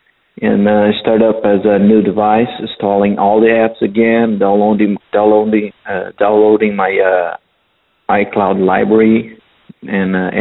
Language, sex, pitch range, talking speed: English, male, 95-110 Hz, 140 wpm